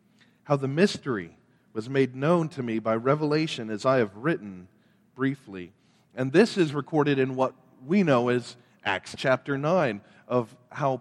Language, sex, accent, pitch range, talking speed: English, male, American, 125-160 Hz, 160 wpm